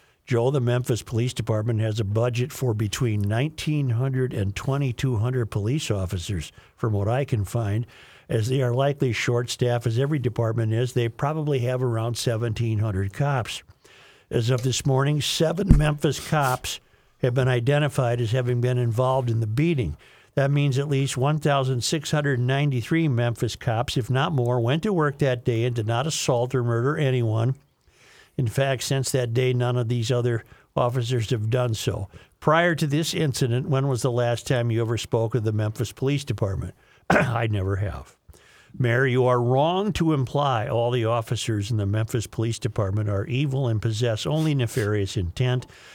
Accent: American